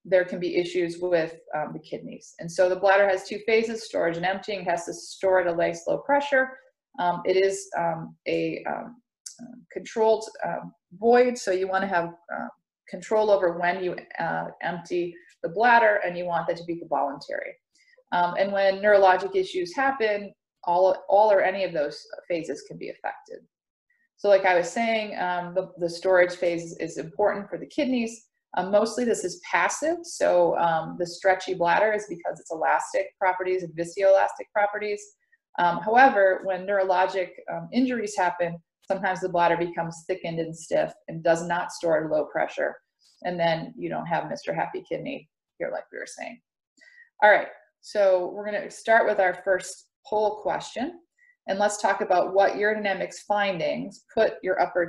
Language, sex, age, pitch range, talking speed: English, female, 30-49, 175-225 Hz, 175 wpm